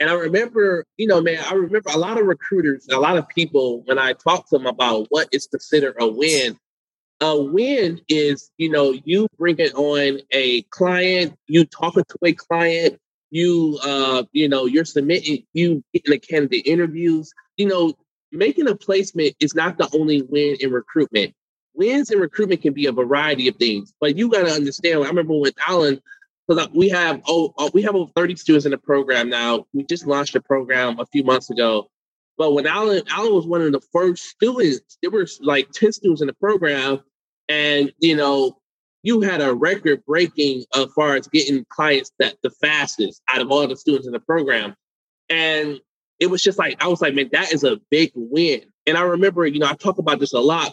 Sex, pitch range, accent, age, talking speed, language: male, 140-175 Hz, American, 20-39, 205 wpm, English